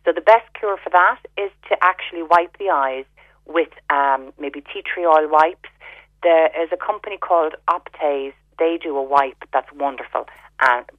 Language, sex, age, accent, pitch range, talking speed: English, female, 30-49, Irish, 135-180 Hz, 175 wpm